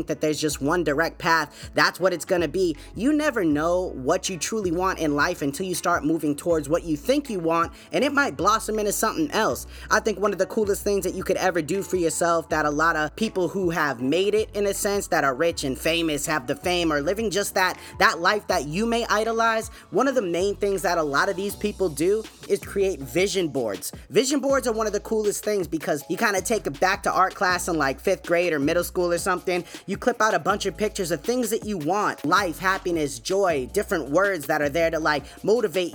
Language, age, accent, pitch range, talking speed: English, 20-39, American, 170-210 Hz, 245 wpm